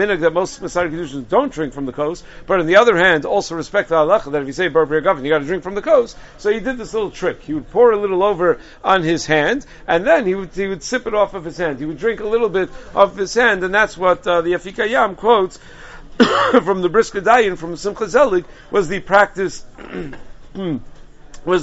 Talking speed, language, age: 235 wpm, English, 50-69